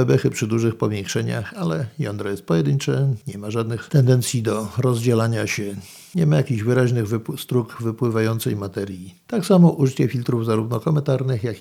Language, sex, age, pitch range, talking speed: Polish, male, 50-69, 110-135 Hz, 155 wpm